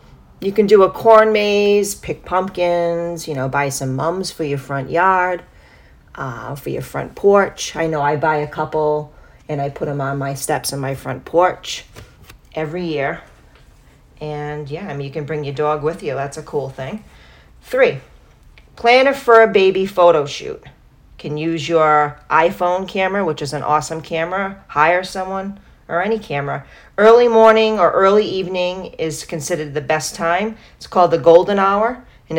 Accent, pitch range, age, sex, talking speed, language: American, 145-190 Hz, 40-59, female, 175 wpm, English